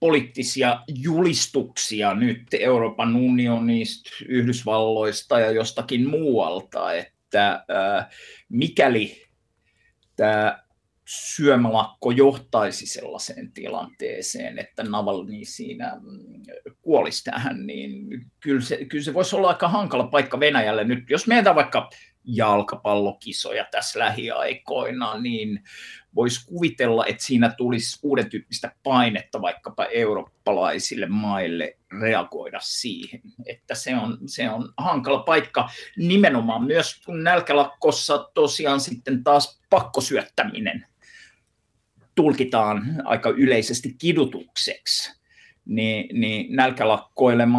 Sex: male